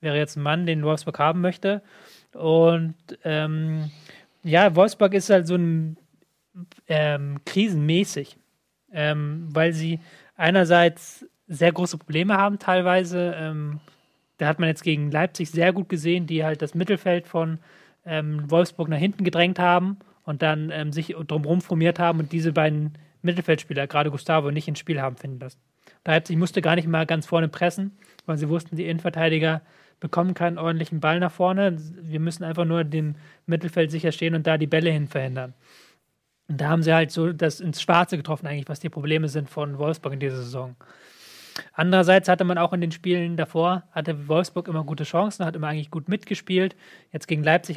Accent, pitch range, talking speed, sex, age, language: German, 155-175 Hz, 175 wpm, male, 30-49, German